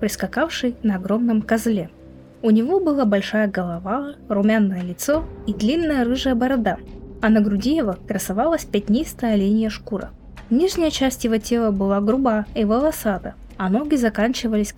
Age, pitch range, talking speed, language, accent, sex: 20-39, 200-235 Hz, 140 wpm, Russian, native, female